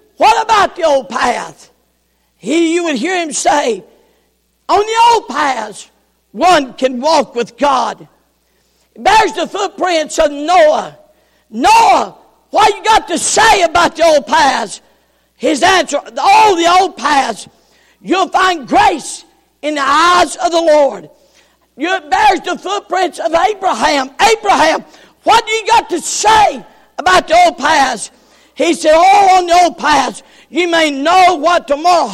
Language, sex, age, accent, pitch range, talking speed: English, female, 50-69, American, 300-390 Hz, 150 wpm